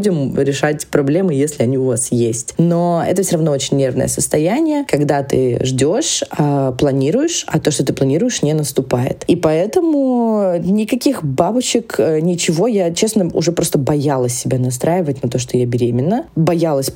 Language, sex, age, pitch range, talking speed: Russian, female, 20-39, 135-175 Hz, 150 wpm